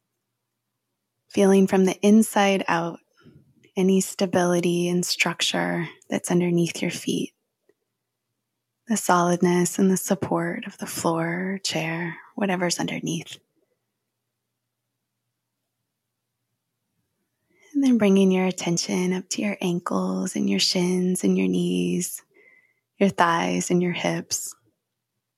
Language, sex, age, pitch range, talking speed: English, female, 20-39, 160-195 Hz, 105 wpm